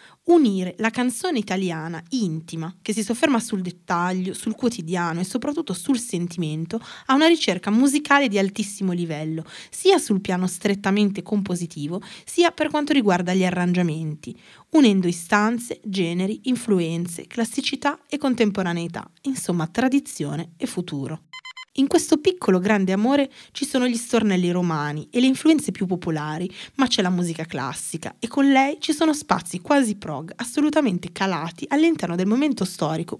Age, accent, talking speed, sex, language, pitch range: 20-39, native, 145 wpm, female, Italian, 170-260 Hz